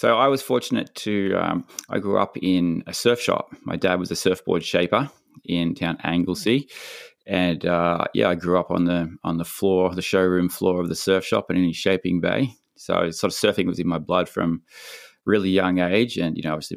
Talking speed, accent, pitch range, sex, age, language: 220 wpm, Australian, 85-100 Hz, male, 20-39, English